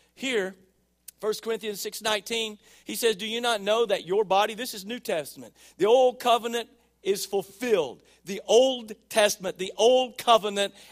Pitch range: 180-250 Hz